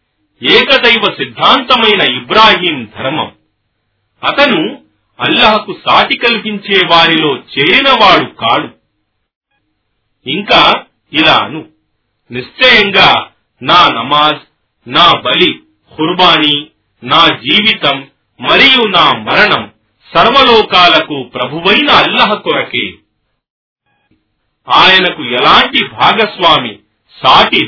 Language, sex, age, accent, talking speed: Telugu, male, 40-59, native, 75 wpm